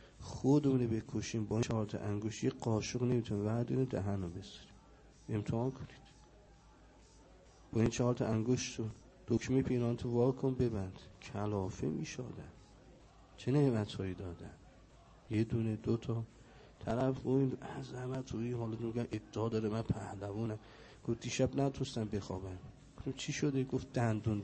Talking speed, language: 130 wpm, Persian